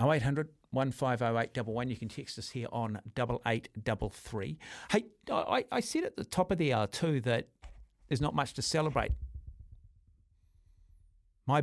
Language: English